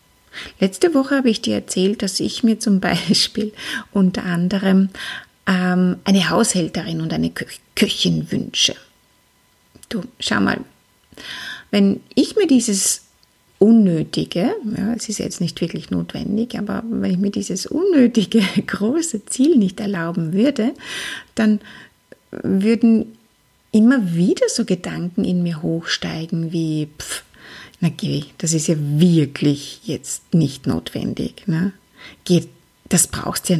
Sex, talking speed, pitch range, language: female, 125 wpm, 180-235 Hz, German